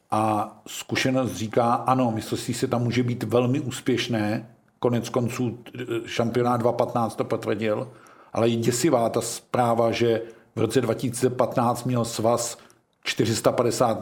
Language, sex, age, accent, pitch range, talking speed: Czech, male, 50-69, native, 115-125 Hz, 130 wpm